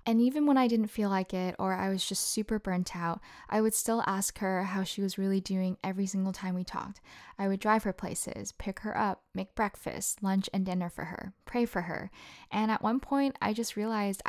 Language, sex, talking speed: English, female, 230 wpm